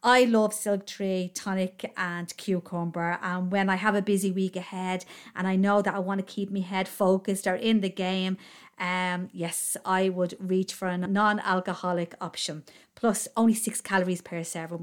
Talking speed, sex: 180 wpm, female